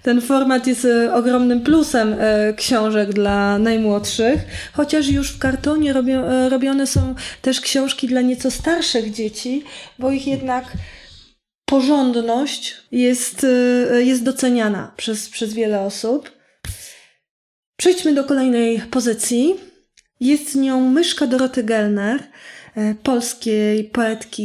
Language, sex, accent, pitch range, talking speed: Polish, female, native, 225-265 Hz, 105 wpm